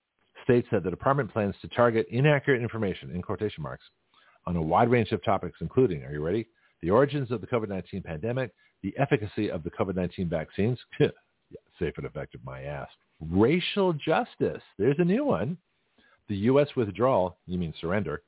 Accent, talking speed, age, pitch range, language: American, 170 wpm, 50-69, 90-130 Hz, English